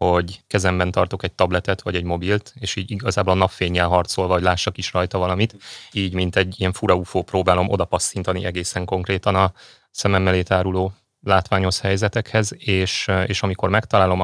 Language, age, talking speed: Hungarian, 30-49, 160 wpm